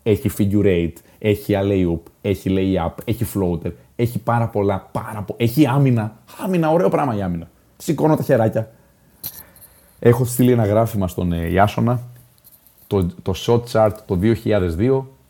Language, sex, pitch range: Greek, male, 90-120 Hz